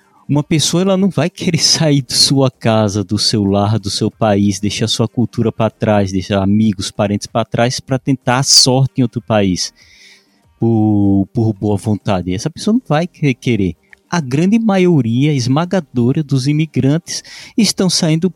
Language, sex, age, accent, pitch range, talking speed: Portuguese, male, 20-39, Brazilian, 115-155 Hz, 165 wpm